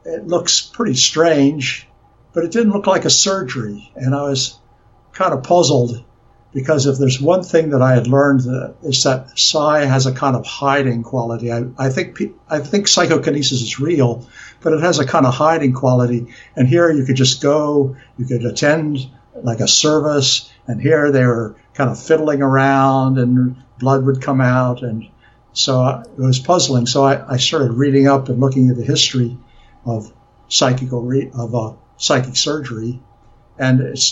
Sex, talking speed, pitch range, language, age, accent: male, 180 wpm, 120-140 Hz, English, 60-79, American